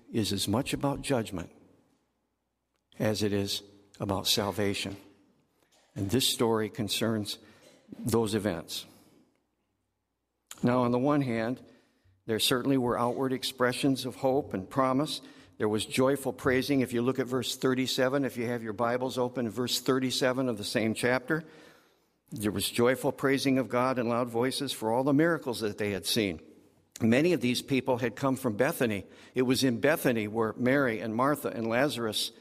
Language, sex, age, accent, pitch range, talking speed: English, male, 60-79, American, 115-135 Hz, 160 wpm